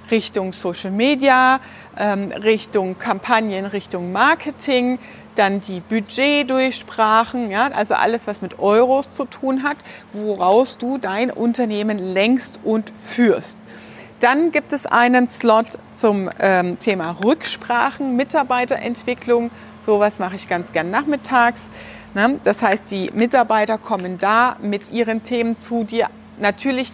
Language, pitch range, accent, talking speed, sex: German, 205-245 Hz, German, 120 wpm, female